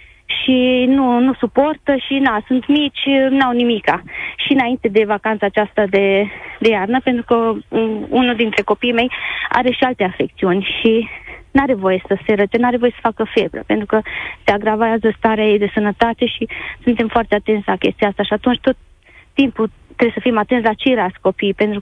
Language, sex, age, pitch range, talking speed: Romanian, female, 20-39, 225-270 Hz, 190 wpm